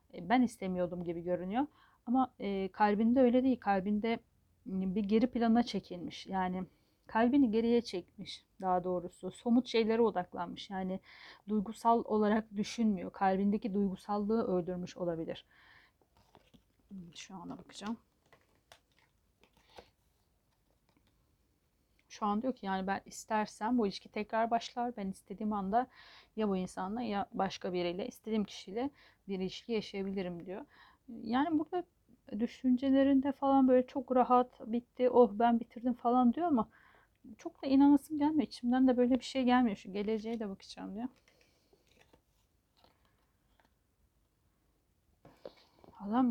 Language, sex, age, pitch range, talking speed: Turkish, female, 40-59, 195-250 Hz, 115 wpm